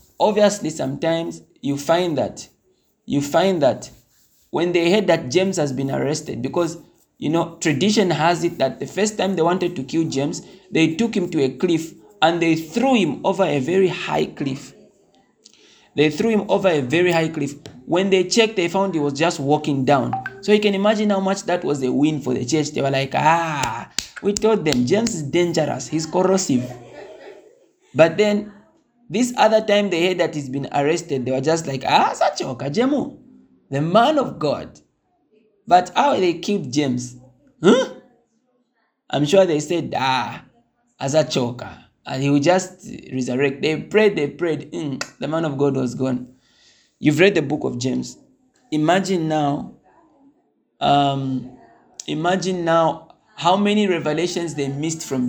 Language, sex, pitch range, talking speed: English, male, 140-195 Hz, 175 wpm